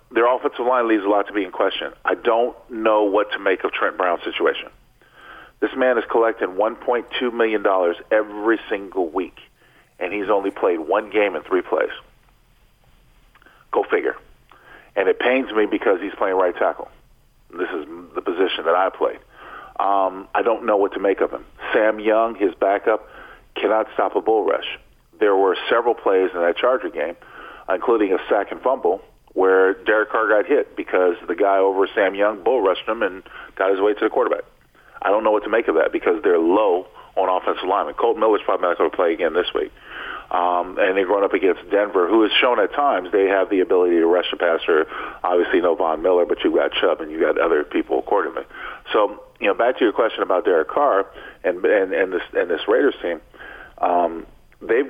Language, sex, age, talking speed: English, male, 40-59, 200 wpm